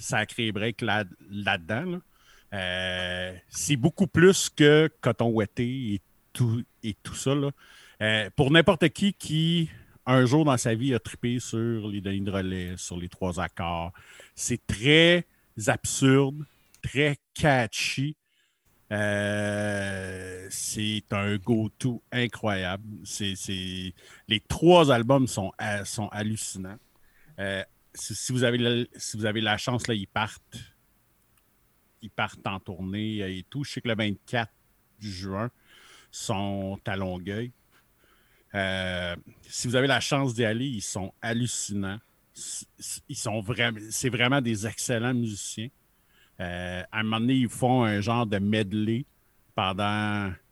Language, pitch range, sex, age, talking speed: French, 100-125 Hz, male, 50-69, 140 wpm